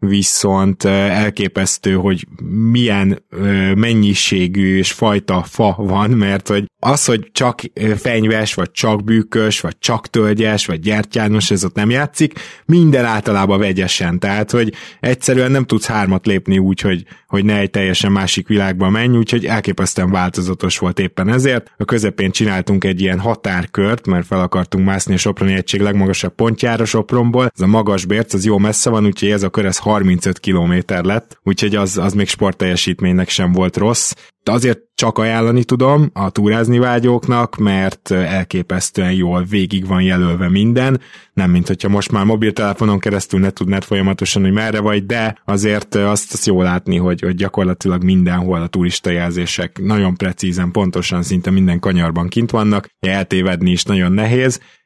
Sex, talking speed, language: male, 155 wpm, Hungarian